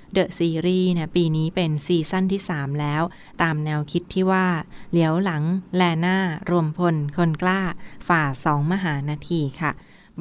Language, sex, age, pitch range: Thai, female, 20-39, 165-195 Hz